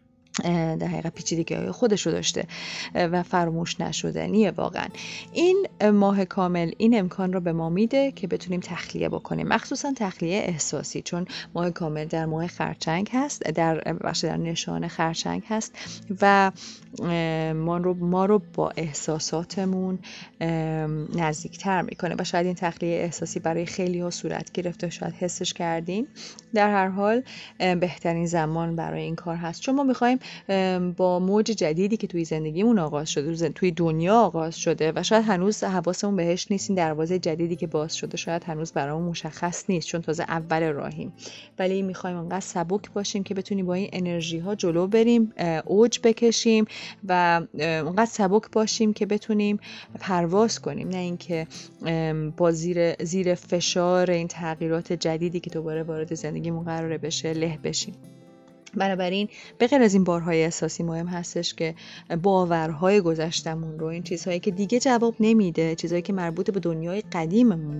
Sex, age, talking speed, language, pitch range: female, 30-49, 150 wpm, Persian, 165-200 Hz